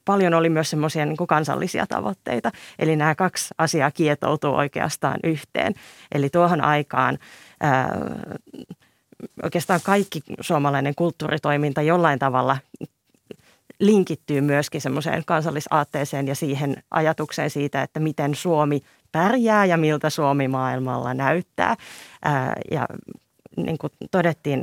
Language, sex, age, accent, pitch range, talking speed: Finnish, female, 30-49, native, 145-170 Hz, 110 wpm